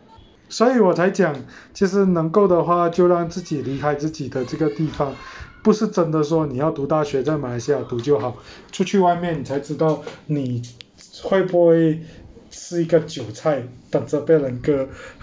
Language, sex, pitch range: Chinese, male, 145-175 Hz